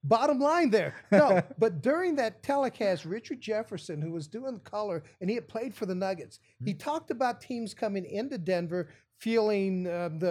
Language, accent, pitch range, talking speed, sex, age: English, American, 185-235 Hz, 180 wpm, male, 50-69